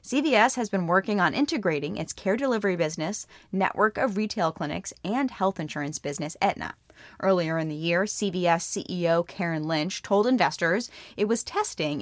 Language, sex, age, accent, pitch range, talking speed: English, female, 20-39, American, 165-210 Hz, 160 wpm